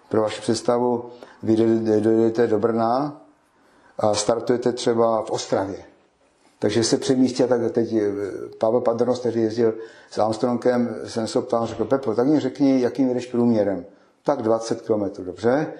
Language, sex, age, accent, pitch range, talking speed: Czech, male, 60-79, native, 115-130 Hz, 150 wpm